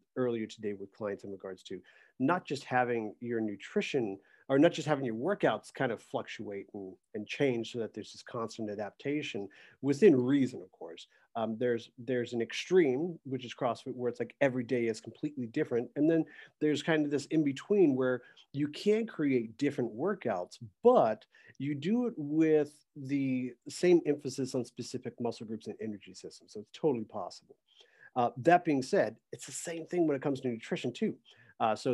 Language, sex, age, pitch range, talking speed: English, male, 40-59, 120-155 Hz, 185 wpm